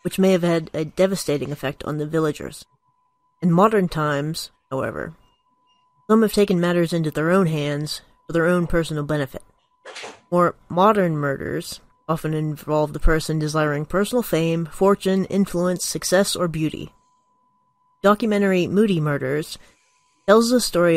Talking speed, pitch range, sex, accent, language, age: 135 wpm, 155-195 Hz, female, American, English, 30-49